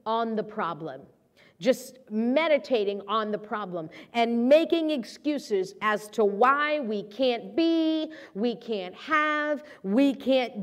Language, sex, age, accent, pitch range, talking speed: English, female, 40-59, American, 210-290 Hz, 125 wpm